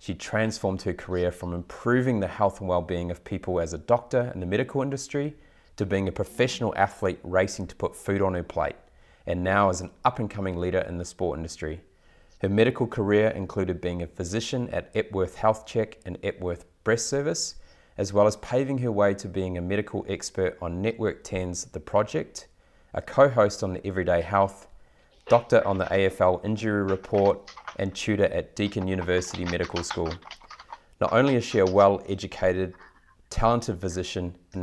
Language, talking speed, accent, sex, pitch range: English, 175 wpm, Australian, male, 90-105 Hz